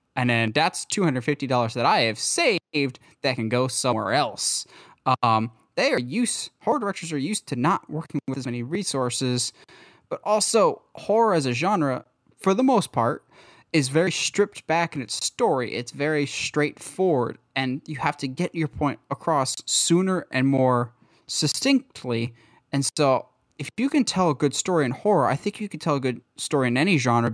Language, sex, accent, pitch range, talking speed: English, male, American, 125-170 Hz, 180 wpm